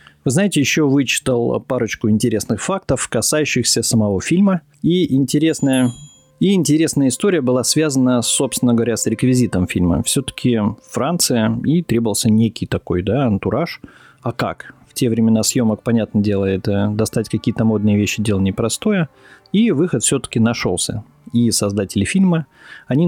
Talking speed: 135 wpm